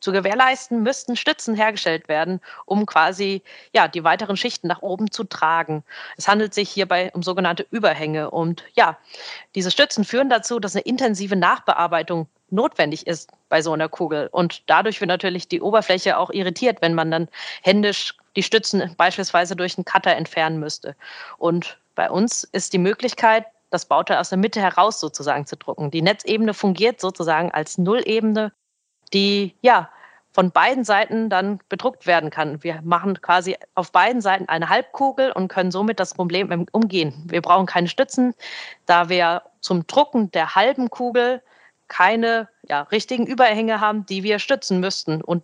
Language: German